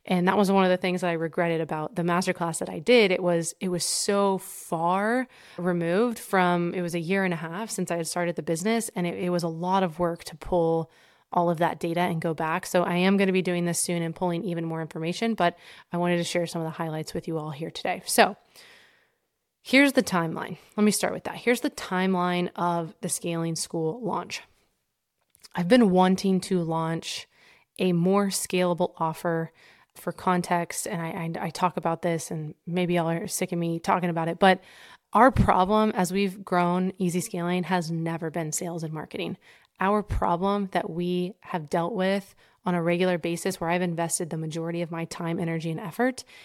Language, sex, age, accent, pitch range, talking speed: English, female, 20-39, American, 170-190 Hz, 210 wpm